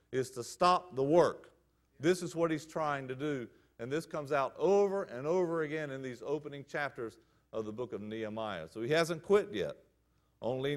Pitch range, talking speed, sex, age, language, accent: 115-155 Hz, 195 wpm, male, 50-69, English, American